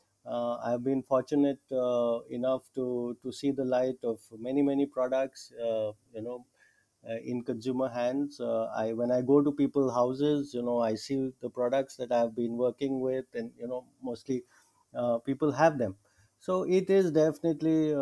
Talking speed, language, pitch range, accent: 175 wpm, English, 120-150 Hz, Indian